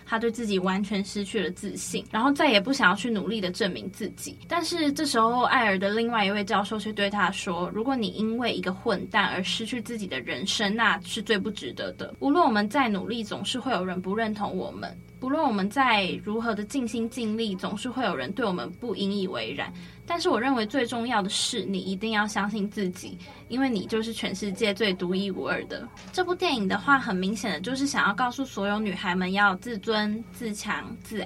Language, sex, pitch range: Chinese, female, 200-245 Hz